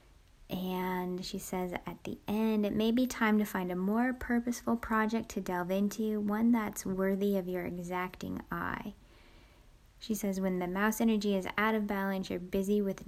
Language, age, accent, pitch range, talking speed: English, 10-29, American, 190-230 Hz, 180 wpm